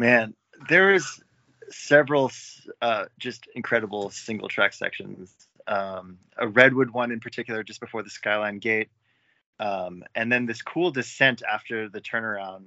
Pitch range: 105-130 Hz